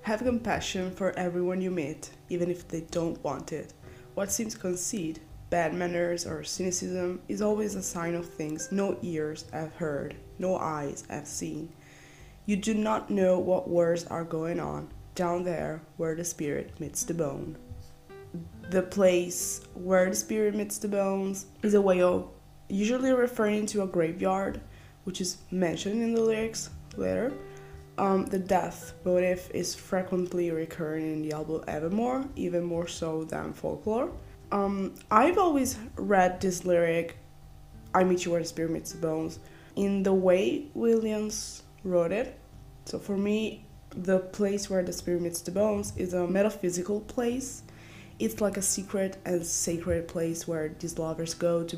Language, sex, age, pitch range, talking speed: English, female, 20-39, 165-195 Hz, 160 wpm